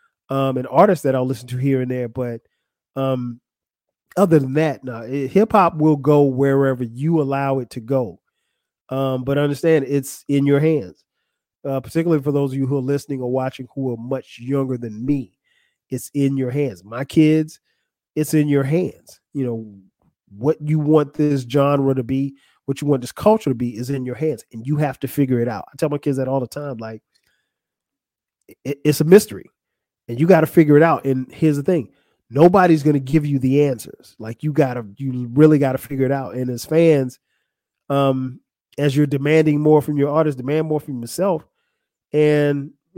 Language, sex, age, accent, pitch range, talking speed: English, male, 30-49, American, 130-155 Hz, 200 wpm